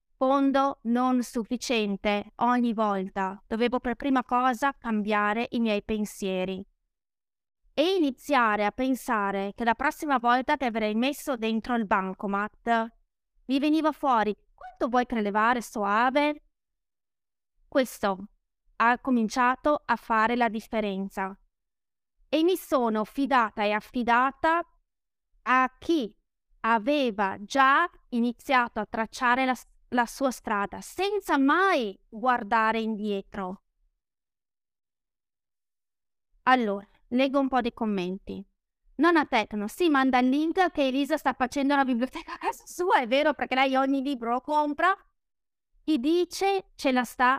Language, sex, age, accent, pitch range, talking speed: Italian, female, 20-39, native, 220-280 Hz, 125 wpm